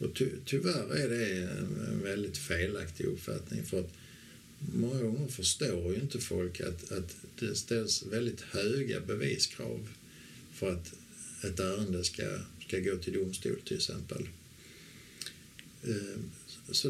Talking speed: 120 wpm